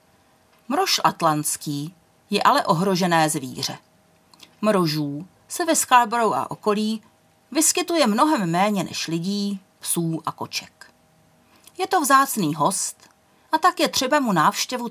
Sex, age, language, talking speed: female, 40-59, Czech, 120 wpm